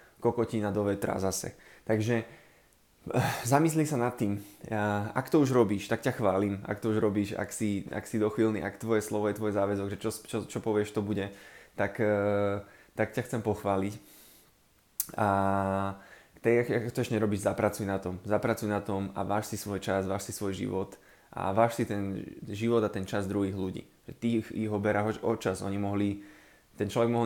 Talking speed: 185 wpm